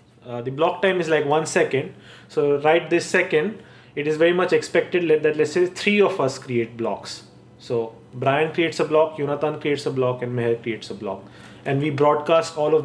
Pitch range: 130-170 Hz